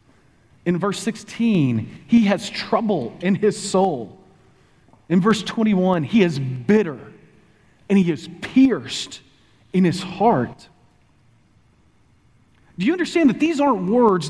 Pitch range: 130-210 Hz